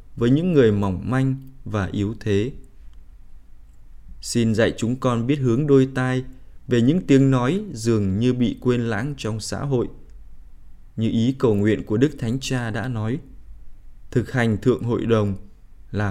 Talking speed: 165 wpm